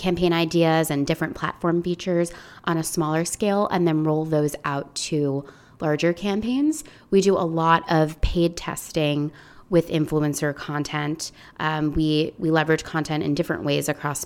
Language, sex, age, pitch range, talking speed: English, female, 20-39, 150-175 Hz, 155 wpm